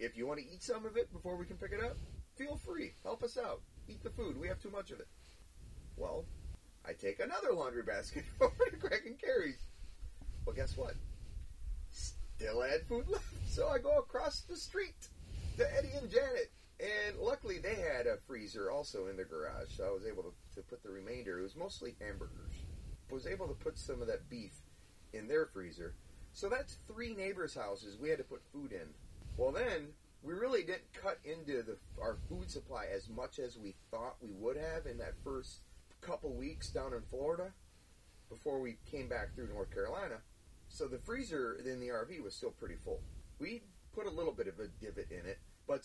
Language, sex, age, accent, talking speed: English, male, 30-49, American, 205 wpm